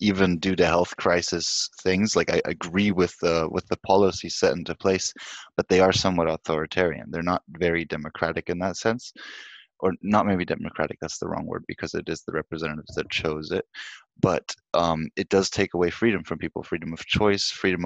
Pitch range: 85-105 Hz